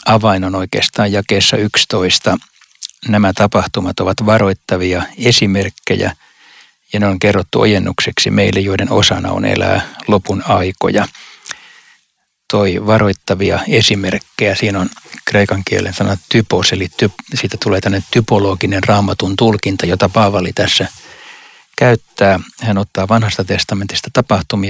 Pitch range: 95-110 Hz